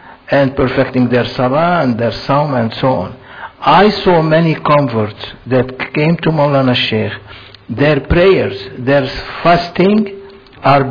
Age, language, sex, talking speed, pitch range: 60-79, English, male, 130 wpm, 120-155 Hz